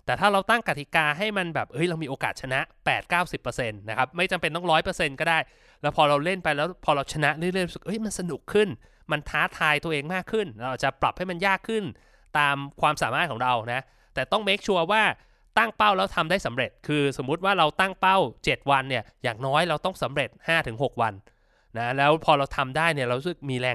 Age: 20-39